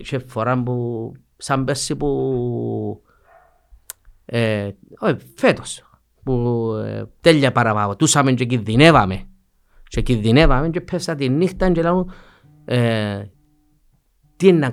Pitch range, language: 110-150 Hz, Greek